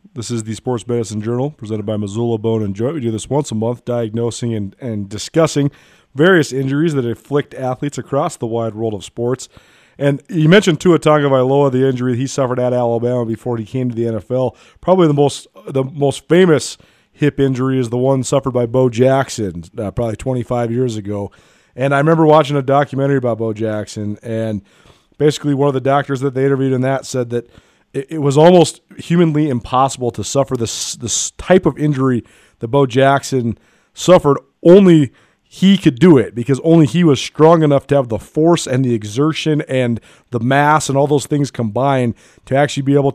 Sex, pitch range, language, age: male, 120-145 Hz, English, 30-49